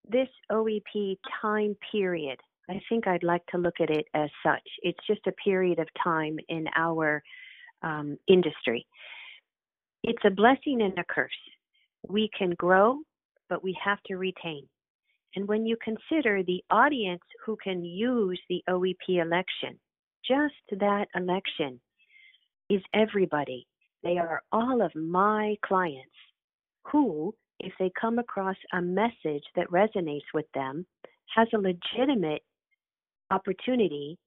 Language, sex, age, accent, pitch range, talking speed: English, female, 50-69, American, 175-225 Hz, 135 wpm